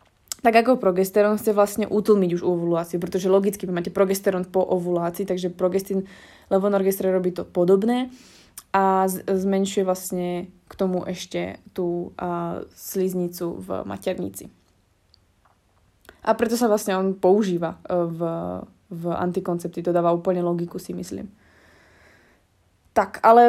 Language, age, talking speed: Slovak, 20-39, 125 wpm